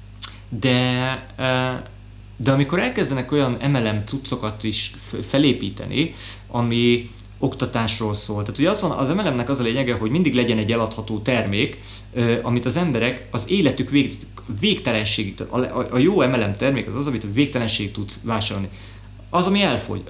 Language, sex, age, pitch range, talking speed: Hungarian, male, 30-49, 105-135 Hz, 135 wpm